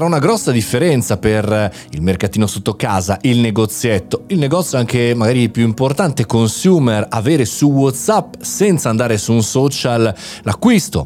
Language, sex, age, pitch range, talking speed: Italian, male, 30-49, 100-150 Hz, 140 wpm